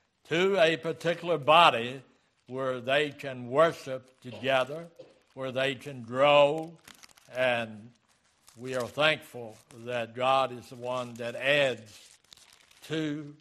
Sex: male